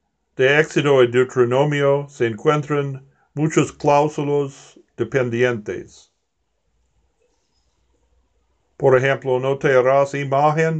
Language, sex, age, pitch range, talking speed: Spanish, male, 60-79, 120-145 Hz, 85 wpm